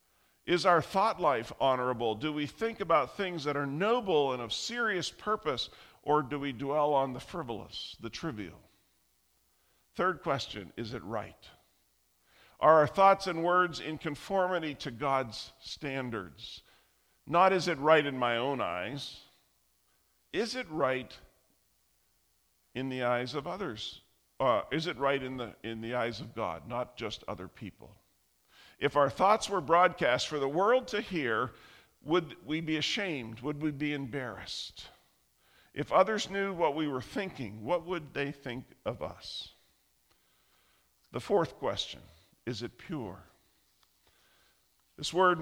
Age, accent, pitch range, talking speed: 50-69, American, 115-170 Hz, 145 wpm